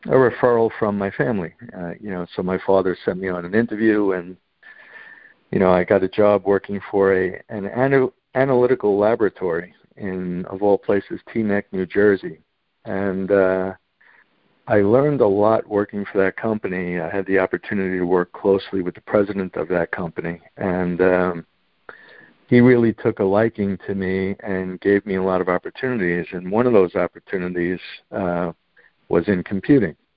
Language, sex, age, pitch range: English, male, 60-79, 95-110 Hz